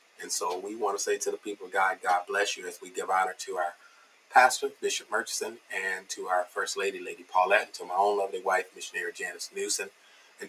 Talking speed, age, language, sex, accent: 230 wpm, 30-49, English, male, American